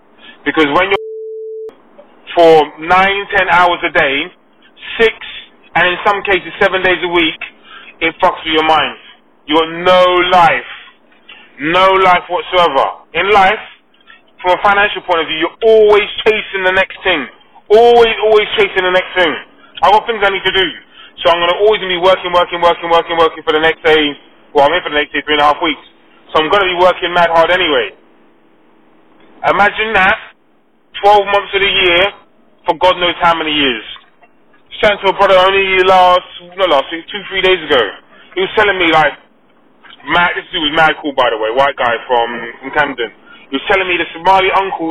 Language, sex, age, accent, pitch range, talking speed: English, male, 20-39, British, 160-195 Hz, 190 wpm